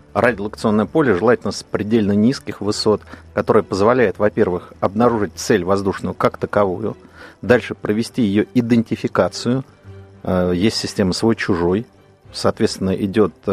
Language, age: Russian, 40-59